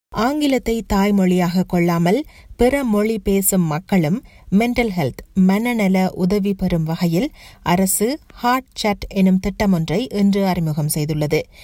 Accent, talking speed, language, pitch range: native, 120 wpm, Tamil, 180-220 Hz